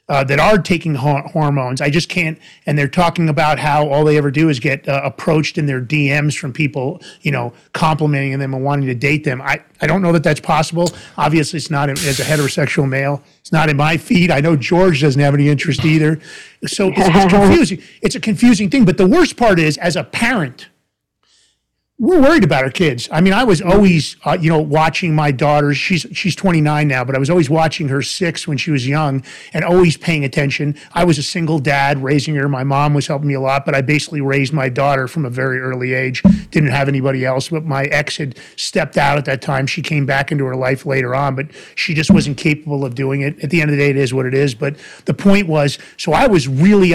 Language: English